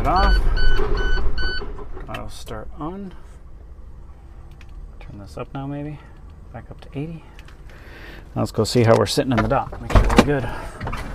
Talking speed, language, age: 145 wpm, English, 40-59